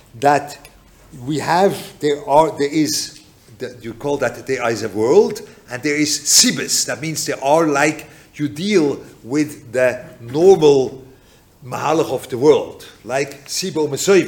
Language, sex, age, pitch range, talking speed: English, male, 50-69, 130-165 Hz, 145 wpm